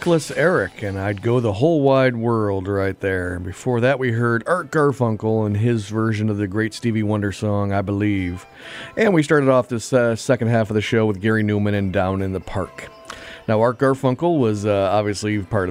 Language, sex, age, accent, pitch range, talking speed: English, male, 40-59, American, 100-125 Hz, 205 wpm